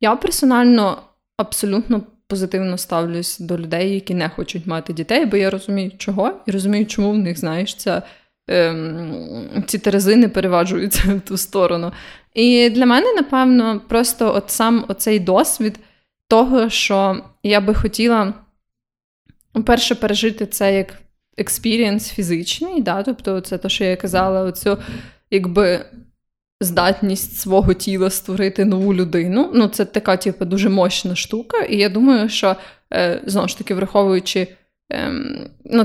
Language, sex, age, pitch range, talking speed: Ukrainian, female, 20-39, 185-225 Hz, 135 wpm